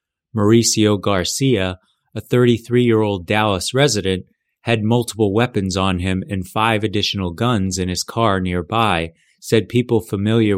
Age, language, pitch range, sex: 30-49, English, 95-115 Hz, male